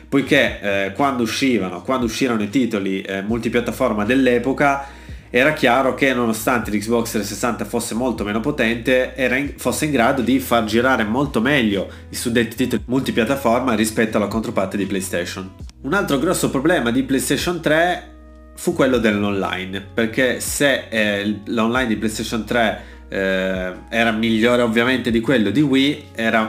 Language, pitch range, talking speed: Italian, 105-125 Hz, 145 wpm